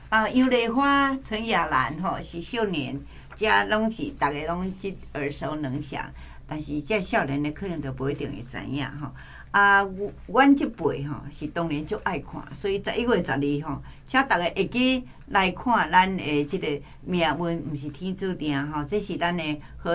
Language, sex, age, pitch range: Chinese, female, 60-79, 150-220 Hz